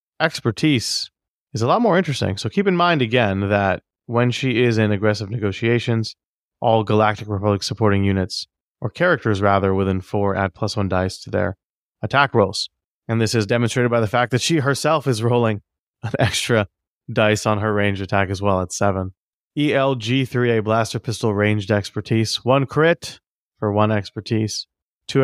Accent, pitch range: American, 100-120 Hz